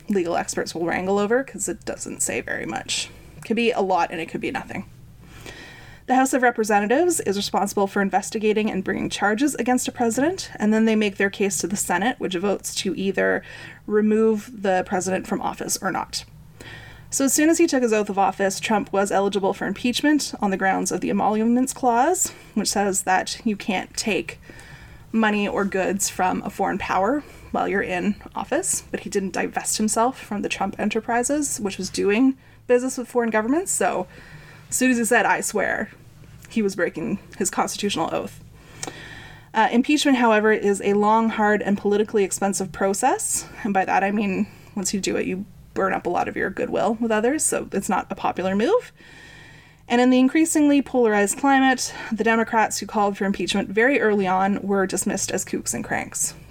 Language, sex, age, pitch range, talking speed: English, female, 20-39, 190-240 Hz, 190 wpm